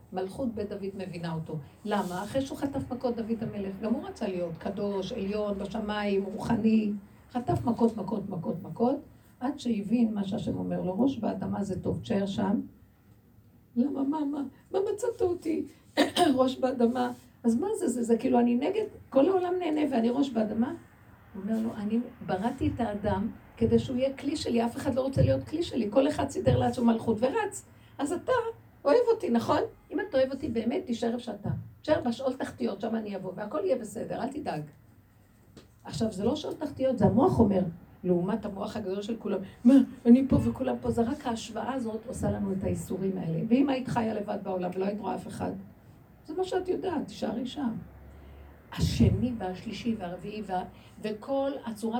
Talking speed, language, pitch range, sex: 180 wpm, Hebrew, 195-260 Hz, female